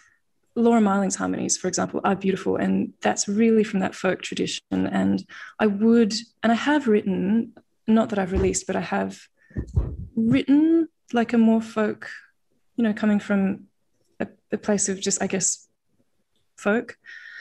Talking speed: 155 wpm